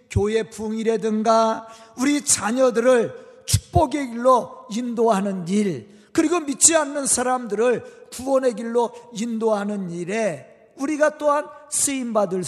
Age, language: 40-59, Korean